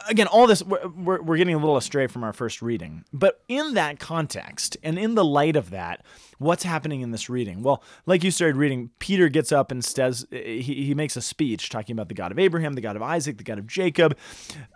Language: English